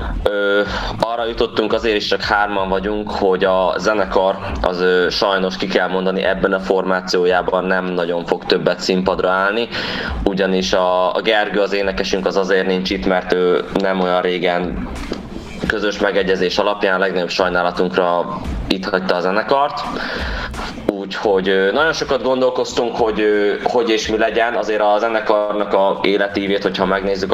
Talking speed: 140 wpm